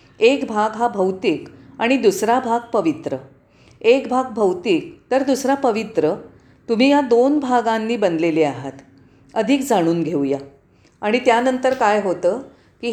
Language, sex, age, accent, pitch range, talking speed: Marathi, female, 40-59, native, 180-250 Hz, 130 wpm